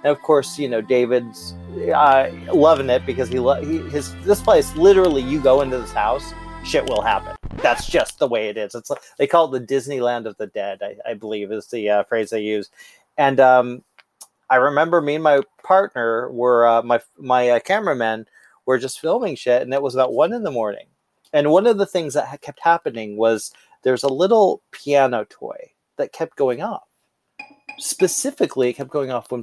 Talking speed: 205 wpm